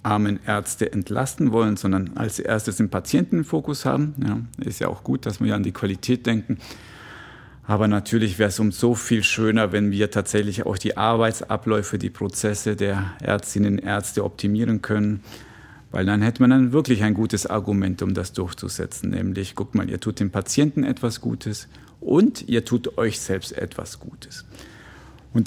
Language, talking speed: German, 175 wpm